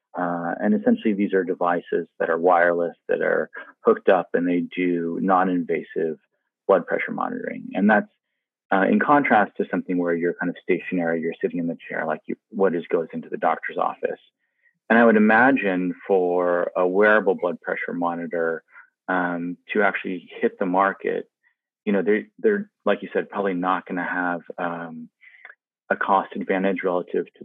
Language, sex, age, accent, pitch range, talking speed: English, male, 30-49, American, 85-120 Hz, 175 wpm